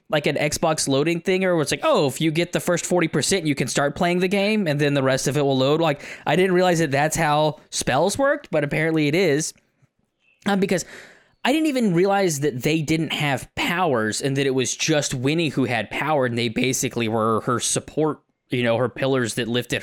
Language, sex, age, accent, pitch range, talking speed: English, male, 20-39, American, 130-175 Hz, 225 wpm